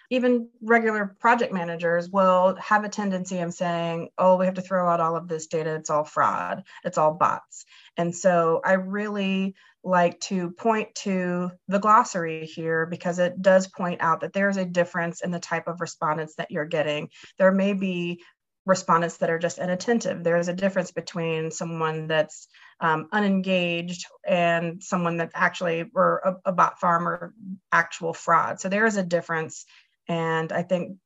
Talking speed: 175 wpm